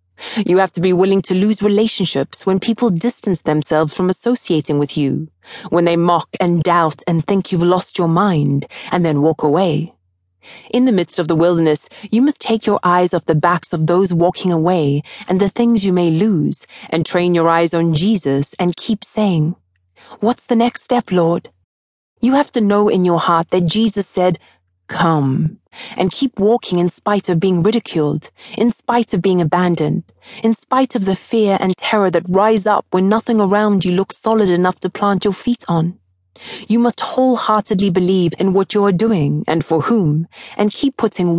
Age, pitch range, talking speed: 20-39, 165-210 Hz, 190 wpm